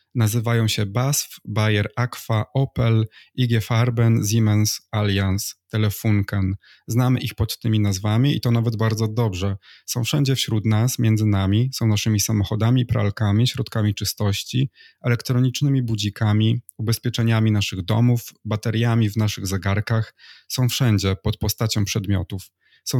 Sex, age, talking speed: male, 20-39, 125 wpm